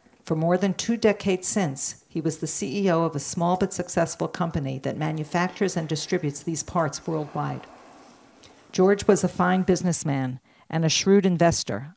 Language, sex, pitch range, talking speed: English, female, 150-180 Hz, 160 wpm